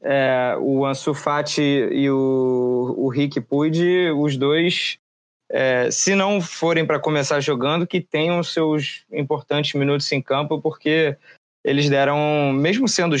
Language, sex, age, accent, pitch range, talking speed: Portuguese, male, 20-39, Brazilian, 135-165 Hz, 135 wpm